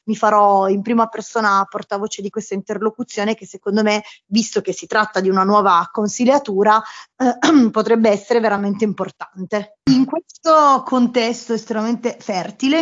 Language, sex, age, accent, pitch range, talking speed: Italian, female, 20-39, native, 200-240 Hz, 140 wpm